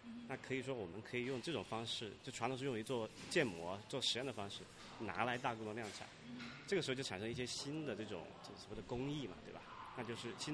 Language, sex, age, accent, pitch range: Chinese, male, 30-49, native, 105-130 Hz